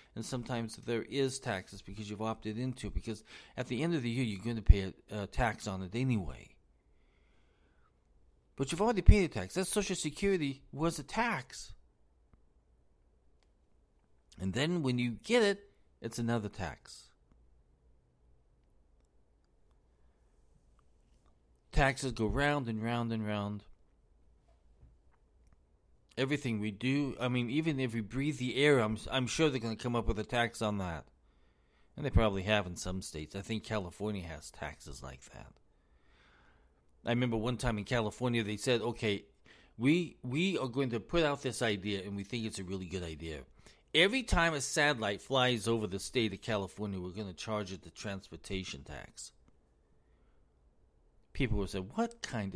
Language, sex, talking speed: English, male, 160 wpm